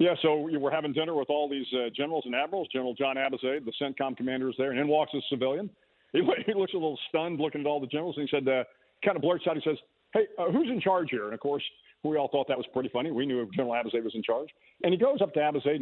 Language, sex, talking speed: English, male, 290 wpm